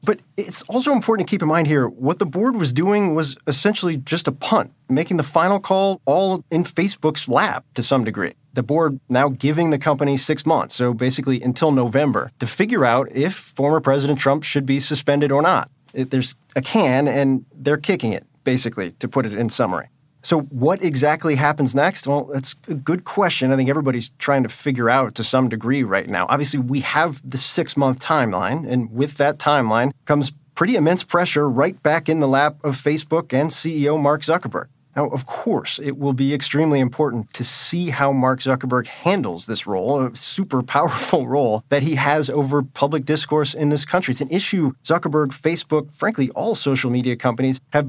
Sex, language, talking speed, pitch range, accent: male, English, 195 wpm, 130-155 Hz, American